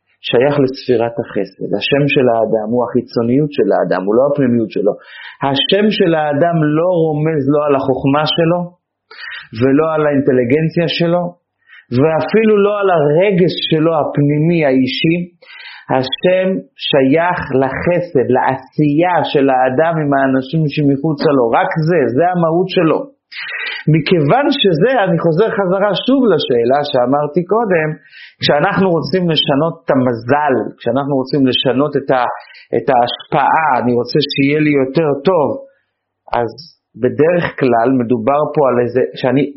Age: 40-59